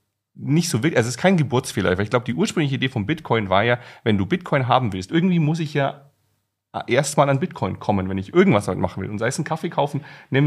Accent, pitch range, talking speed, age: German, 110-150 Hz, 245 wpm, 30-49